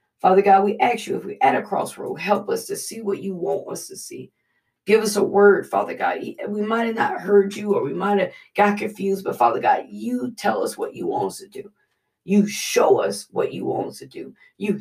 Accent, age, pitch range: American, 40-59, 200-245 Hz